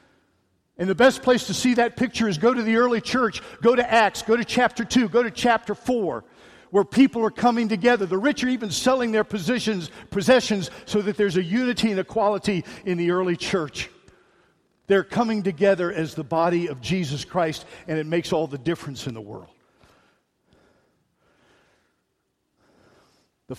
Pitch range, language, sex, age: 160-225 Hz, English, male, 50-69